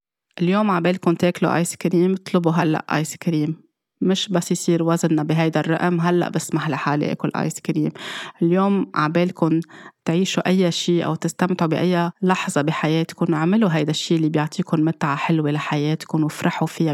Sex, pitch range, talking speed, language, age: female, 155-175 Hz, 145 wpm, Arabic, 20-39